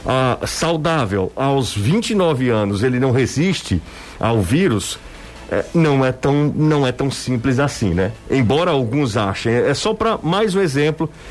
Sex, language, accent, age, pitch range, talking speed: male, Portuguese, Brazilian, 50-69, 120-155 Hz, 155 wpm